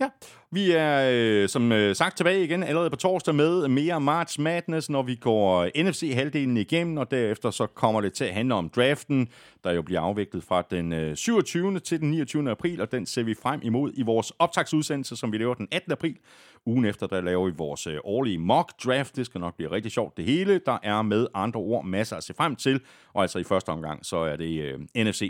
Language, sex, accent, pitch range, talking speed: Danish, male, native, 95-150 Hz, 215 wpm